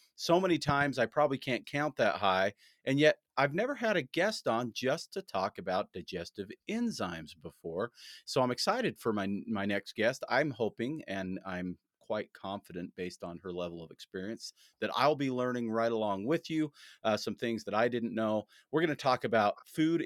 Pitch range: 95-120 Hz